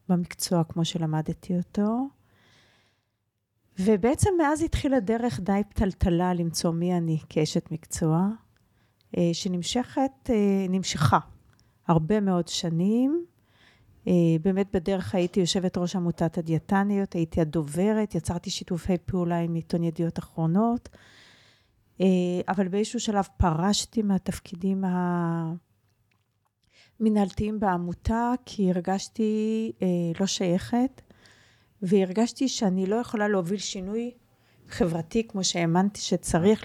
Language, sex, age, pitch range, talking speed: Hebrew, female, 40-59, 170-210 Hz, 95 wpm